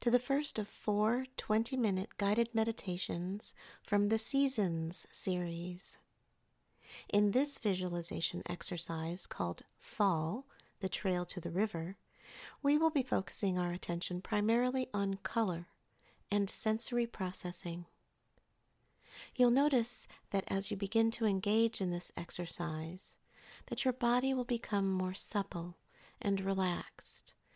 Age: 50-69